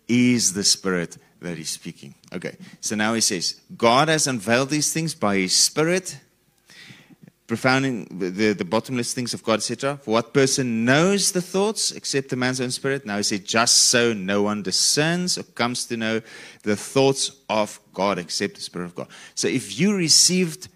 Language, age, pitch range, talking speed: English, 30-49, 105-150 Hz, 180 wpm